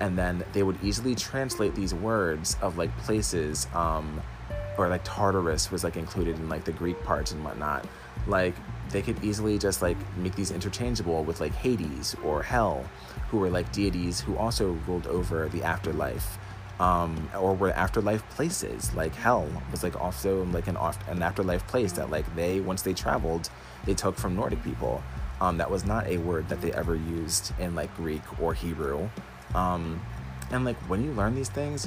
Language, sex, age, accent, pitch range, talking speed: English, male, 20-39, American, 80-100 Hz, 185 wpm